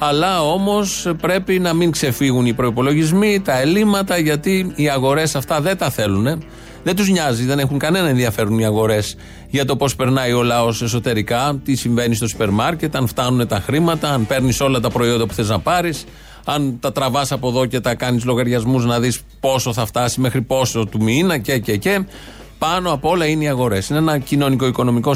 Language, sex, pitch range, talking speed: Greek, male, 120-155 Hz, 195 wpm